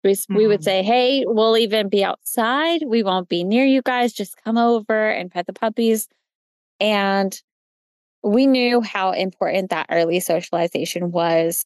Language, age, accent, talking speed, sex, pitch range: English, 20-39, American, 160 wpm, female, 175-215 Hz